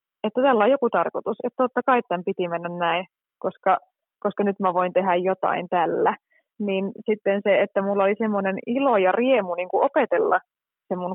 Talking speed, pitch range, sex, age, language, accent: 185 wpm, 185-225 Hz, female, 20-39, Finnish, native